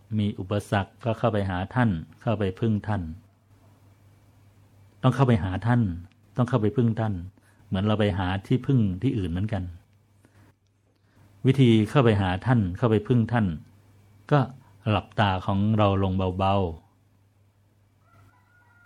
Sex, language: male, Thai